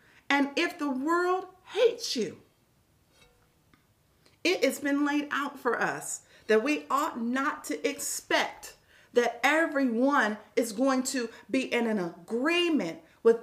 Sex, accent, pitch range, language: female, American, 210-315 Hz, English